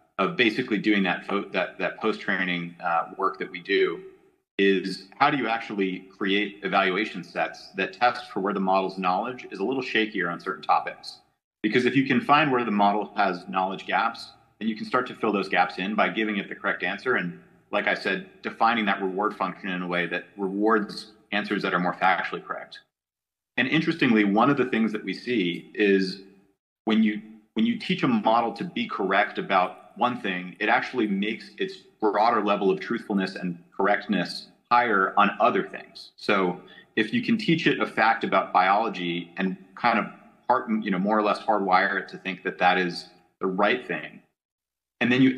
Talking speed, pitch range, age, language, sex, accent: 195 wpm, 95-120 Hz, 30-49, English, male, American